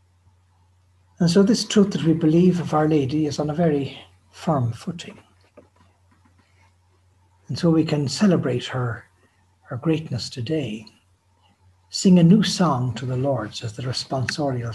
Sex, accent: male, Irish